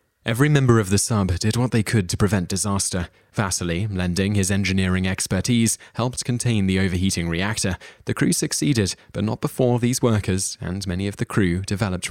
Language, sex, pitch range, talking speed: English, male, 95-110 Hz, 180 wpm